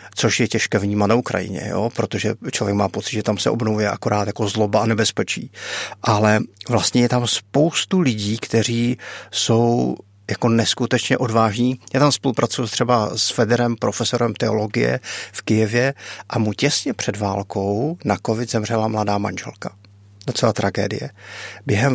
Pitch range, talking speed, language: 105-120 Hz, 150 wpm, Czech